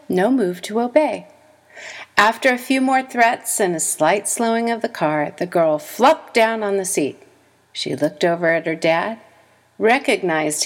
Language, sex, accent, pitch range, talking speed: English, female, American, 190-260 Hz, 170 wpm